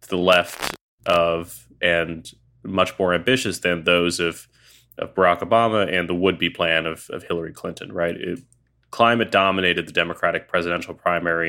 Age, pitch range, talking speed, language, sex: 20-39, 85-95 Hz, 145 wpm, English, male